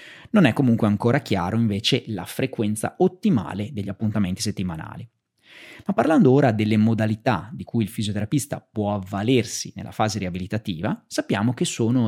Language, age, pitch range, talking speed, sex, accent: Italian, 30-49, 105-145 Hz, 145 wpm, male, native